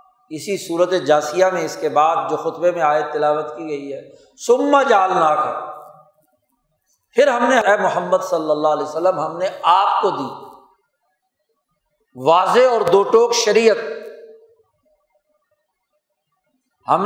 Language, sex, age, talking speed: Urdu, male, 50-69, 135 wpm